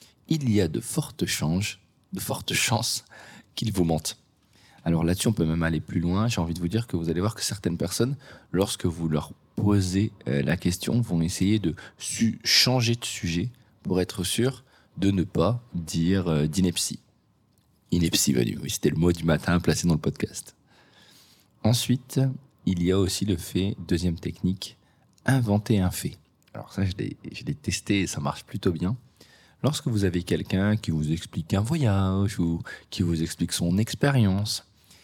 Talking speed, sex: 175 wpm, male